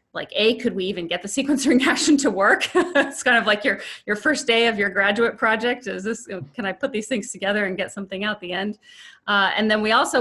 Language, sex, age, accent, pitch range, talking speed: English, female, 30-49, American, 185-230 Hz, 245 wpm